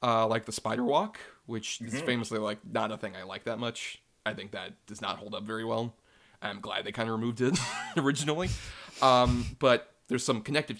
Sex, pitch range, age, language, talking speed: male, 115-135 Hz, 30-49, English, 210 wpm